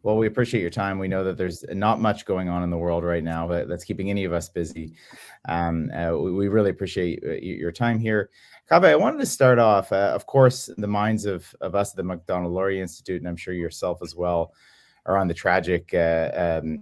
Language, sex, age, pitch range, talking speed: English, male, 30-49, 85-105 Hz, 230 wpm